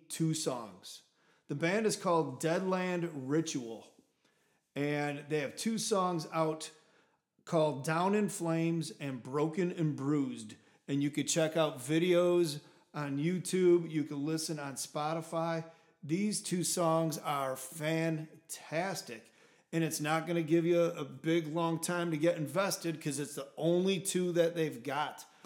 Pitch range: 150-170 Hz